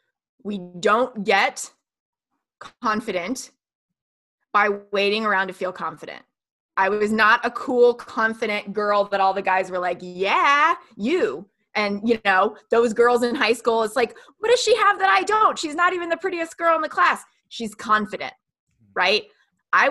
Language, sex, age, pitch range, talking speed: English, female, 20-39, 205-280 Hz, 165 wpm